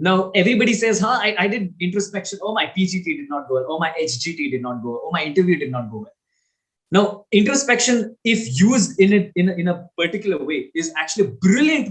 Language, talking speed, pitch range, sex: Hindi, 225 wpm, 140-195 Hz, male